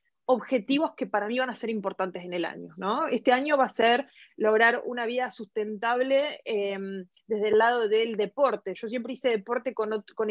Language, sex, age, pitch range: Spanish, female, 20-39, 215-260 Hz